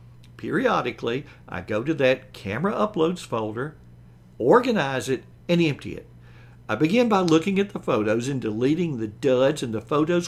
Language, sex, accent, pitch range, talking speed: English, male, American, 105-170 Hz, 160 wpm